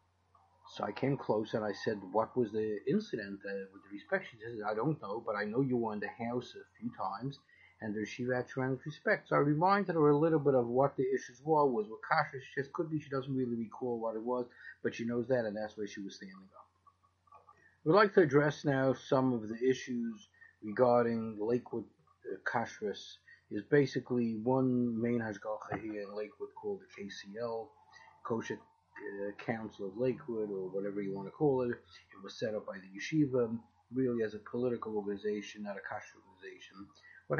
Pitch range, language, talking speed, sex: 105-140 Hz, English, 205 wpm, male